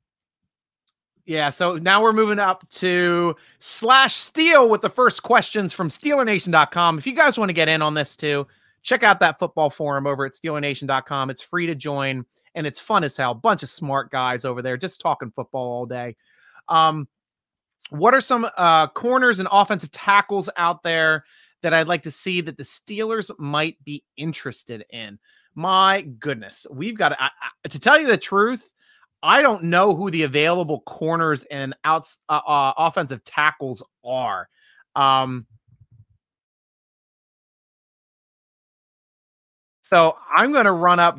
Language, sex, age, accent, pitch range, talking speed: English, male, 30-49, American, 135-190 Hz, 160 wpm